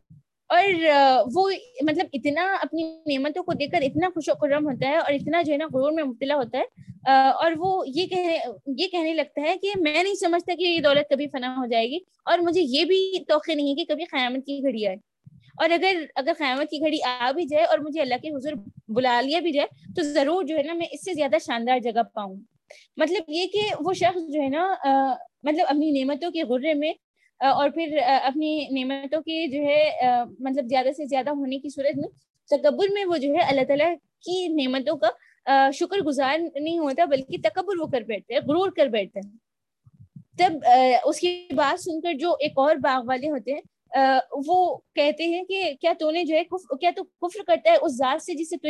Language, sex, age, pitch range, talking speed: Urdu, female, 20-39, 270-335 Hz, 205 wpm